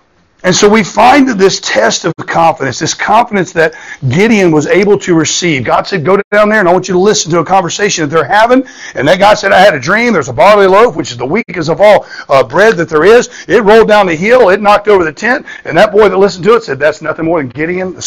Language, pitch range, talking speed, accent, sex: English, 150-200 Hz, 270 wpm, American, male